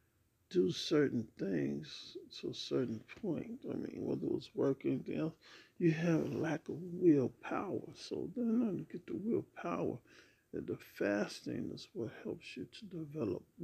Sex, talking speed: male, 165 wpm